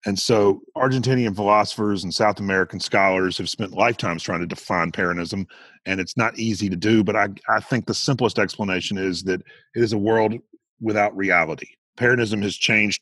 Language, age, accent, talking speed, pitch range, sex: English, 40-59, American, 180 wpm, 95-120 Hz, male